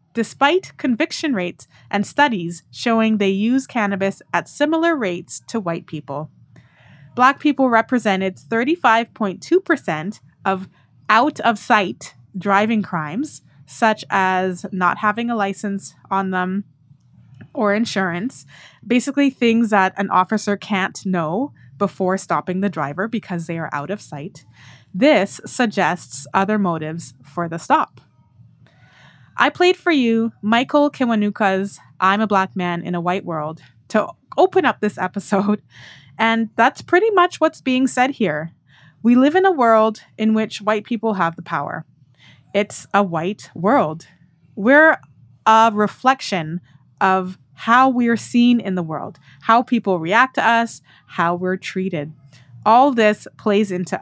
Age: 20-39